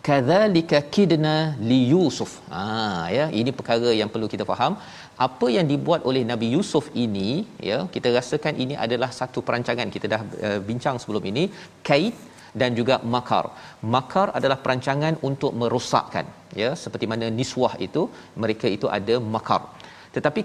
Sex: male